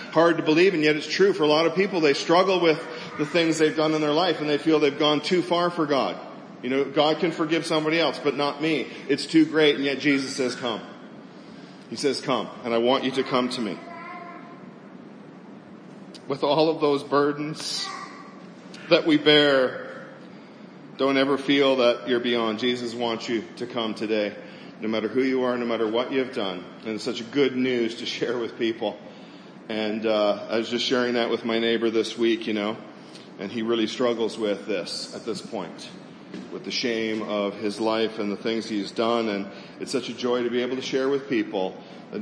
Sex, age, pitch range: male, 40-59, 110-150 Hz